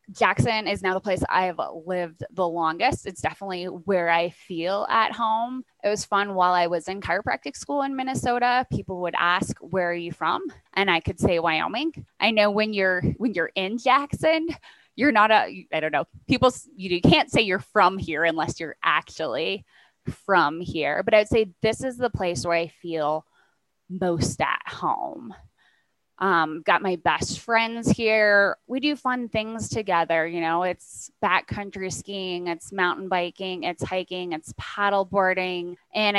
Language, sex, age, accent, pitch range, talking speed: English, female, 20-39, American, 170-215 Hz, 170 wpm